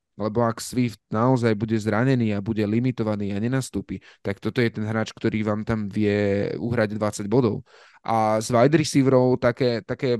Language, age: Slovak, 20-39